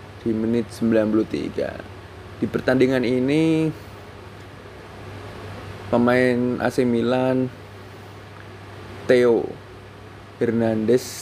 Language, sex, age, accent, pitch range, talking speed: Indonesian, male, 20-39, native, 105-125 Hz, 60 wpm